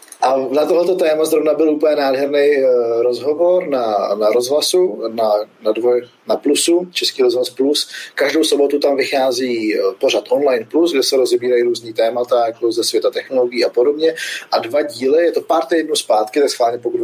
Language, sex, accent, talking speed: Czech, male, native, 170 wpm